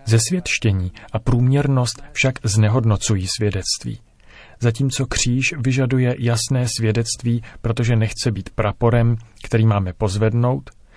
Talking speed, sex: 100 wpm, male